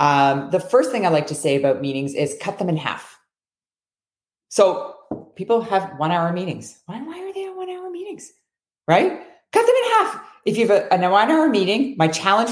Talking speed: 210 wpm